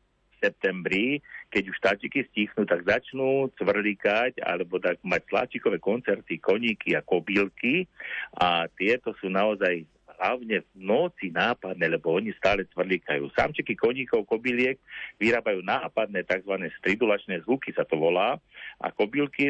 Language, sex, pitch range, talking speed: Slovak, male, 95-125 Hz, 125 wpm